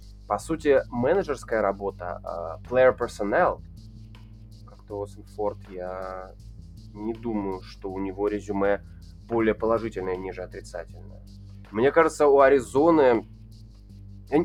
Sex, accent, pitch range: male, native, 100-135 Hz